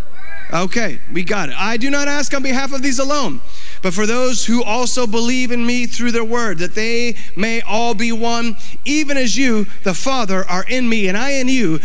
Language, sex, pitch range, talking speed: English, male, 180-245 Hz, 215 wpm